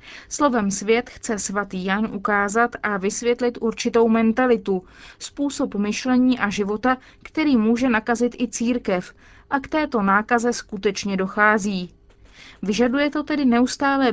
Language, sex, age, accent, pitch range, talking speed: Czech, female, 30-49, native, 205-255 Hz, 125 wpm